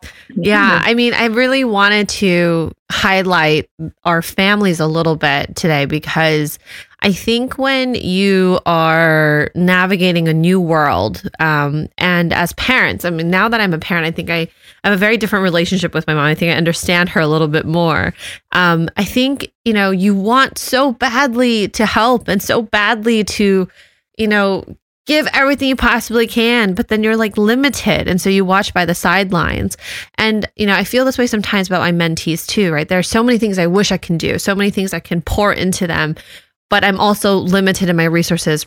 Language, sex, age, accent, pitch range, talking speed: English, female, 20-39, American, 170-220 Hz, 195 wpm